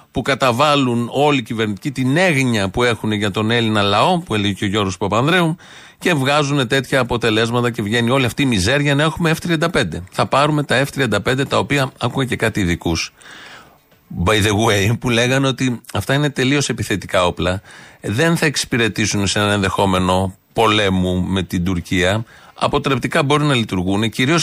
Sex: male